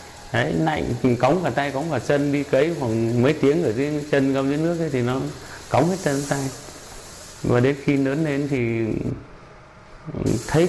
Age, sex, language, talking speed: 30-49, male, Vietnamese, 190 wpm